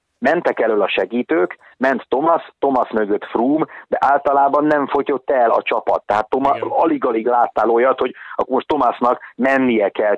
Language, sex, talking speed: Hungarian, male, 160 wpm